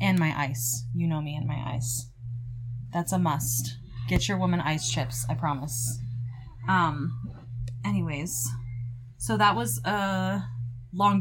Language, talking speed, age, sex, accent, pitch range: English, 140 wpm, 20-39, female, American, 120-170 Hz